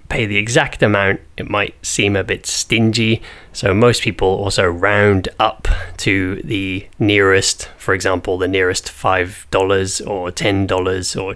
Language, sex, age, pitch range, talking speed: English, male, 20-39, 95-120 Hz, 155 wpm